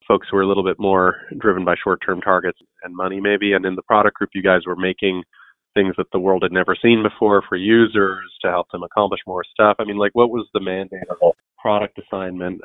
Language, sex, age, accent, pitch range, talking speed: English, male, 30-49, American, 90-105 Hz, 235 wpm